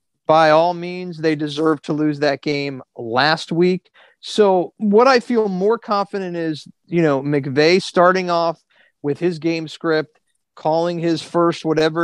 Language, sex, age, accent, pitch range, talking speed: English, male, 30-49, American, 140-170 Hz, 155 wpm